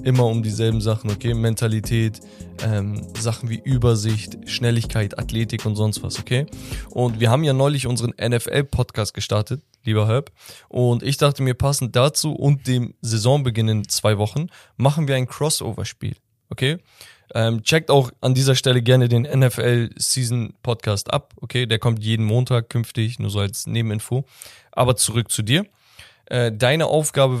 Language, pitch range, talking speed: German, 110-130 Hz, 160 wpm